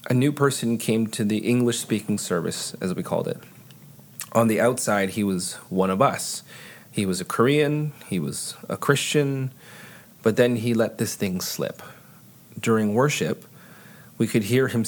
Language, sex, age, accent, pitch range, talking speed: English, male, 30-49, American, 105-130 Hz, 165 wpm